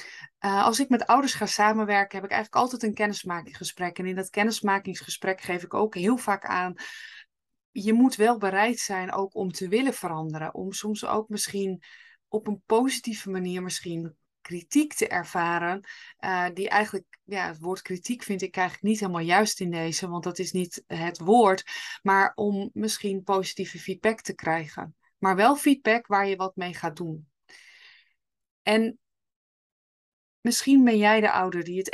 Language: Dutch